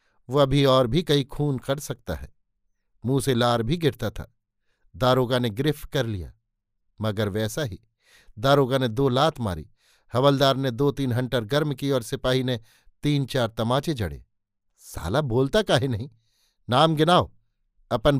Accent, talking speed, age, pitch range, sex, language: native, 160 wpm, 60-79, 110-150 Hz, male, Hindi